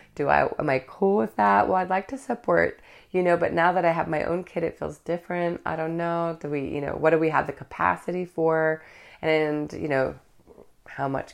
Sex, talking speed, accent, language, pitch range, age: female, 235 wpm, American, English, 125-165 Hz, 30-49